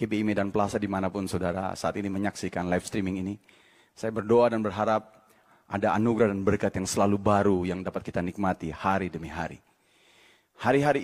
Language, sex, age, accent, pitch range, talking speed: Indonesian, male, 30-49, native, 100-120 Hz, 165 wpm